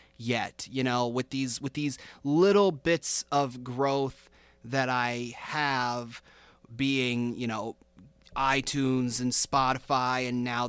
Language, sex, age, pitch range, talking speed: English, male, 30-49, 130-155 Hz, 125 wpm